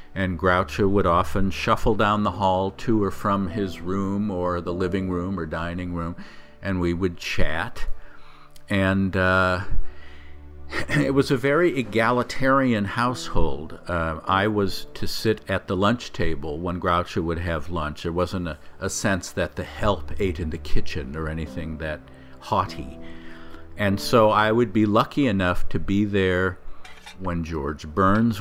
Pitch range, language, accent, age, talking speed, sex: 85-105 Hz, English, American, 50-69, 160 wpm, male